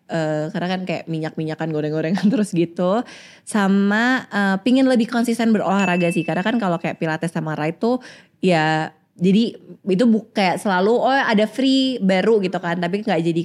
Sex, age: female, 20-39